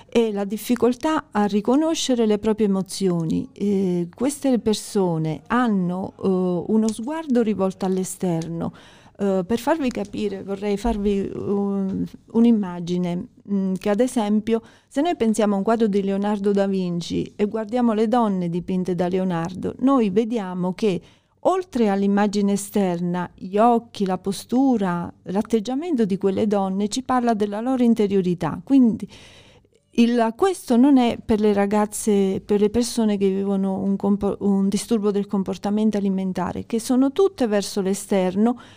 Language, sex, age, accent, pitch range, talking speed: Italian, female, 40-59, native, 195-235 Hz, 130 wpm